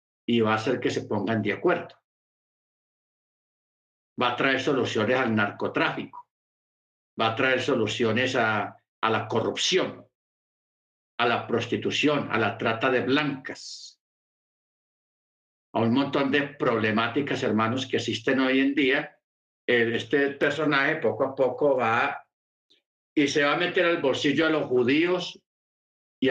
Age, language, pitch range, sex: 50-69, Spanish, 115-150 Hz, male